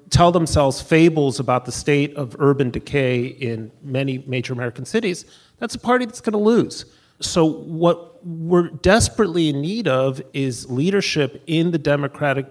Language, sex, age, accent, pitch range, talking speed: English, male, 40-59, American, 130-170 Hz, 155 wpm